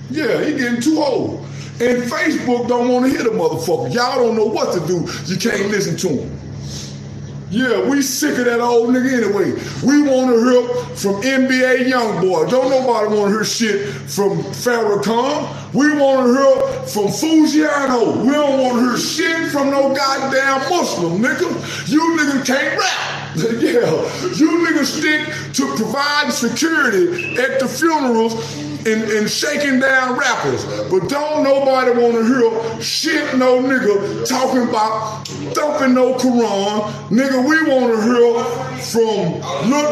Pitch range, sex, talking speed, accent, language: 220-280 Hz, male, 155 wpm, American, English